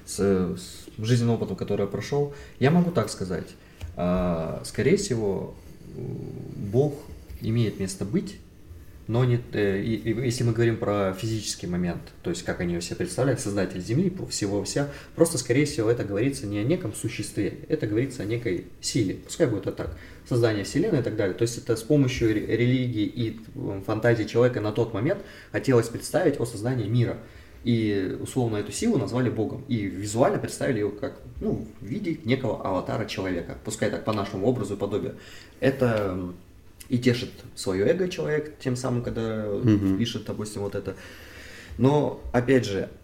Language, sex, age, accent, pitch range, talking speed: Russian, male, 20-39, native, 100-125 Hz, 155 wpm